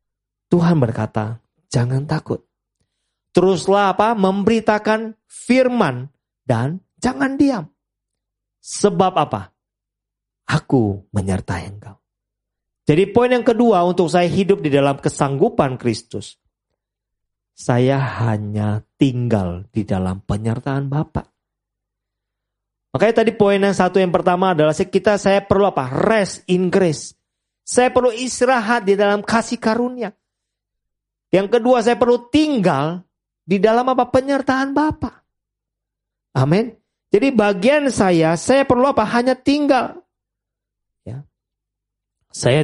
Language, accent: Indonesian, native